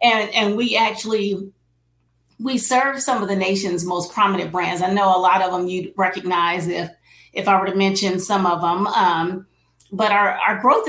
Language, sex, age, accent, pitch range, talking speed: English, female, 40-59, American, 180-210 Hz, 195 wpm